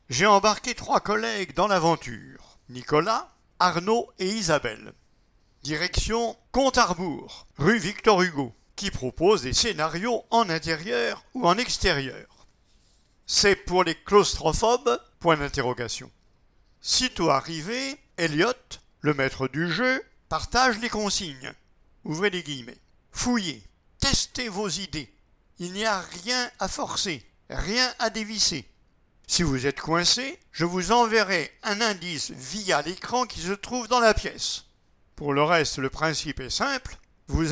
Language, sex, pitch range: English, male, 145-210 Hz